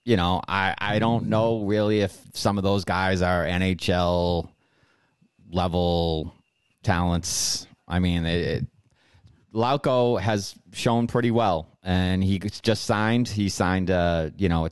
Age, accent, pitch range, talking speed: 30-49, American, 95-120 Hz, 120 wpm